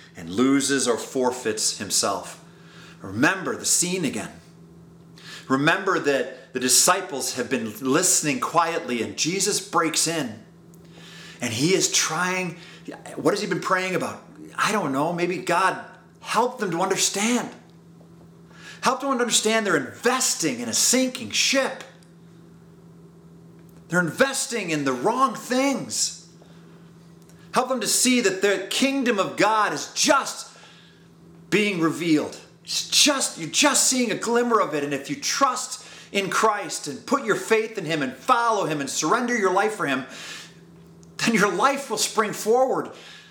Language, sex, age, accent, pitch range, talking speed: English, male, 30-49, American, 170-240 Hz, 145 wpm